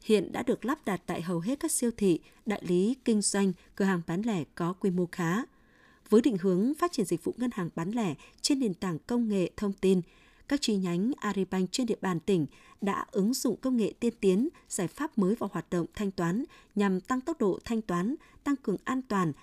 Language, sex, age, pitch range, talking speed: Vietnamese, female, 20-39, 180-230 Hz, 230 wpm